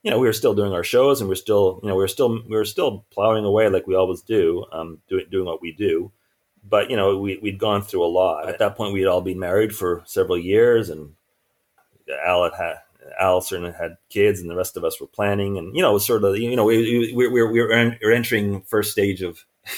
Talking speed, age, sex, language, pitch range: 255 wpm, 30-49, male, English, 95-115 Hz